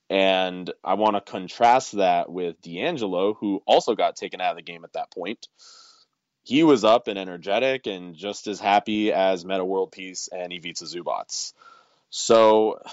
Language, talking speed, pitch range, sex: English, 165 wpm, 85-115 Hz, male